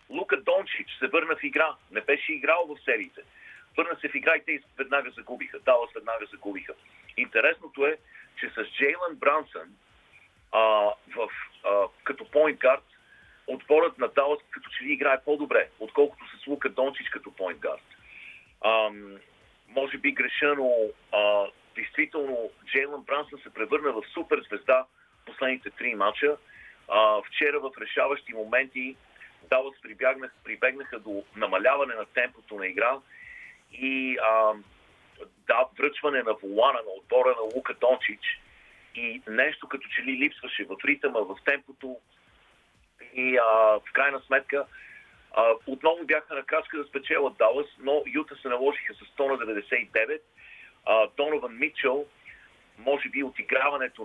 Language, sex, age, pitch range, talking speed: Bulgarian, male, 40-59, 120-155 Hz, 135 wpm